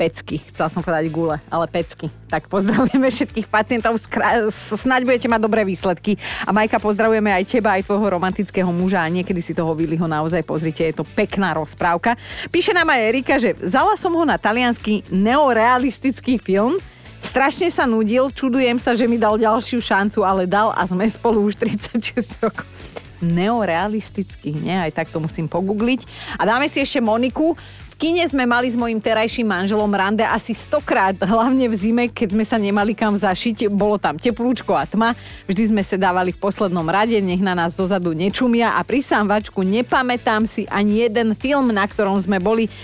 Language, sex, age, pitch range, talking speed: Slovak, female, 30-49, 185-245 Hz, 180 wpm